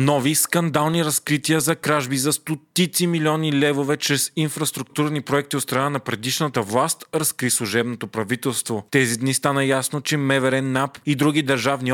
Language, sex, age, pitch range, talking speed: Bulgarian, male, 30-49, 125-150 Hz, 150 wpm